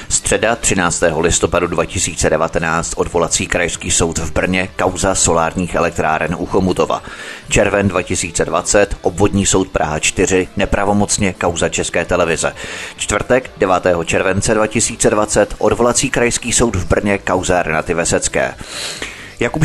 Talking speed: 115 wpm